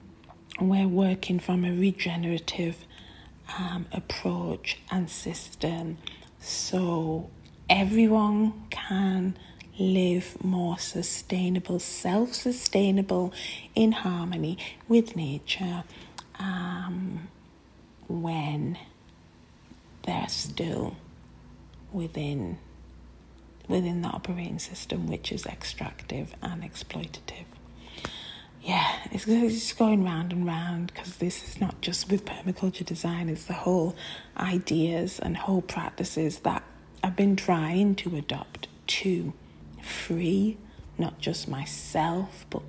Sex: female